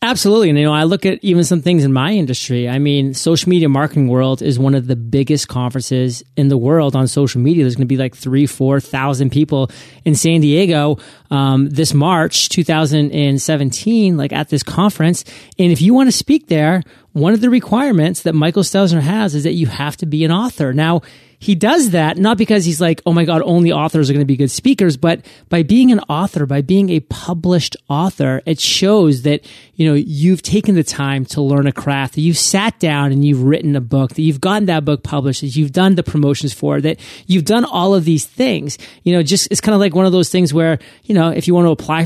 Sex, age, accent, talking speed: male, 30-49, American, 235 wpm